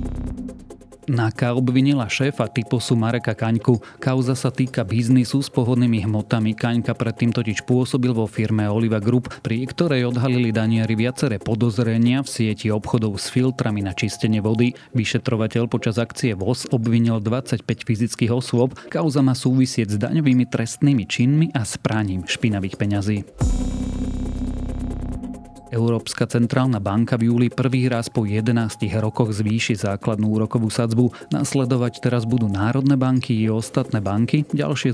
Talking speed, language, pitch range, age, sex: 130 wpm, Slovak, 110-125 Hz, 30-49, male